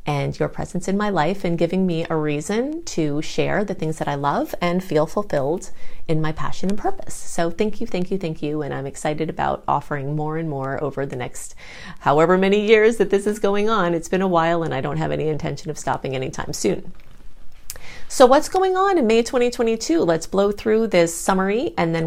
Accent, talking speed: American, 220 wpm